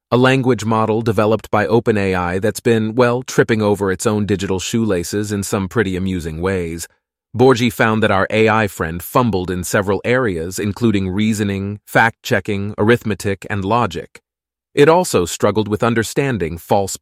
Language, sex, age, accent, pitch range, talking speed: English, male, 30-49, American, 95-120 Hz, 150 wpm